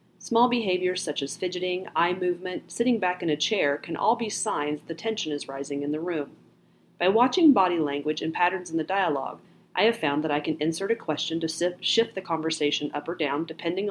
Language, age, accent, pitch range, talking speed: English, 40-59, American, 150-205 Hz, 210 wpm